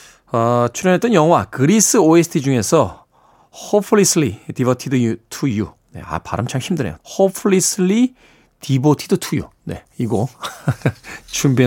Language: Korean